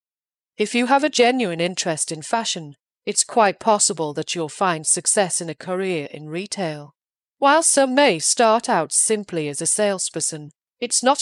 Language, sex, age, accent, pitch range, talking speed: English, female, 40-59, British, 165-205 Hz, 165 wpm